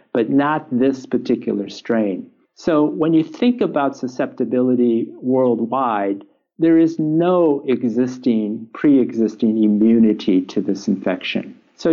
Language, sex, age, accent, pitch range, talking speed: English, male, 50-69, American, 110-140 Hz, 110 wpm